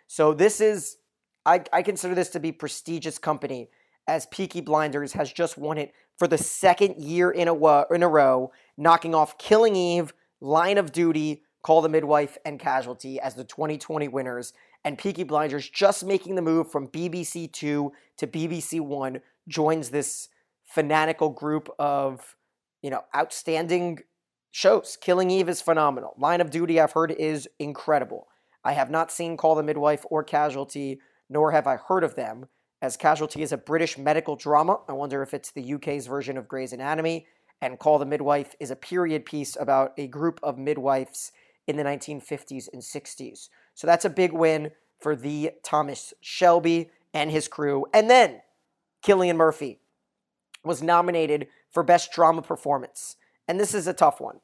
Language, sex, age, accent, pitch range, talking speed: English, male, 30-49, American, 145-170 Hz, 170 wpm